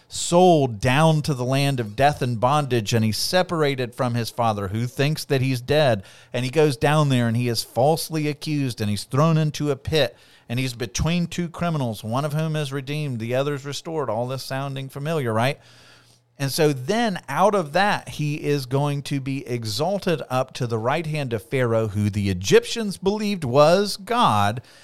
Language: English